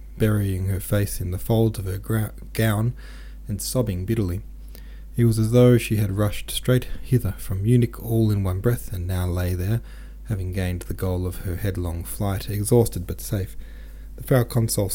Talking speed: 180 wpm